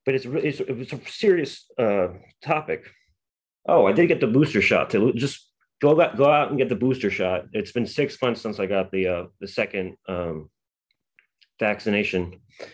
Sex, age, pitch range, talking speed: male, 30-49, 95-125 Hz, 180 wpm